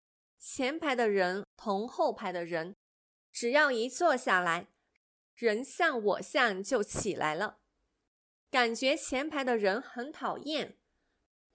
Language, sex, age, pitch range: Chinese, female, 20-39, 215-305 Hz